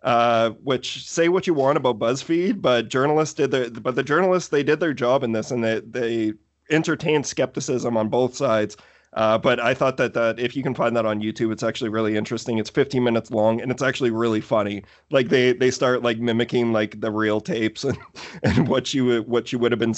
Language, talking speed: English, 220 wpm